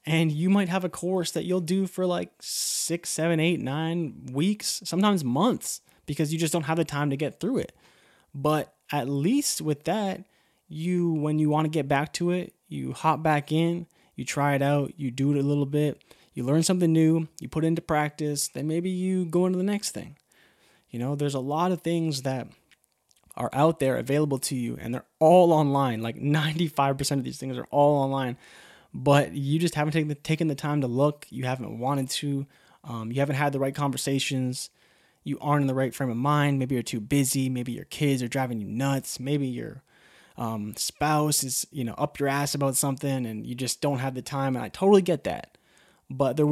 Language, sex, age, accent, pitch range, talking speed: English, male, 20-39, American, 130-160 Hz, 215 wpm